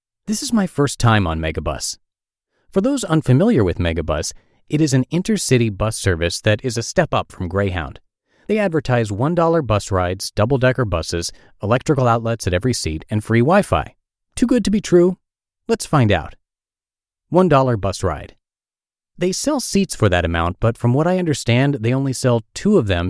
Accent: American